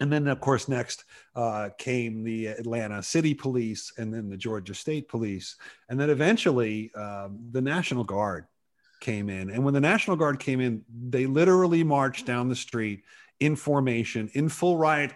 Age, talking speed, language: 40-59, 175 wpm, English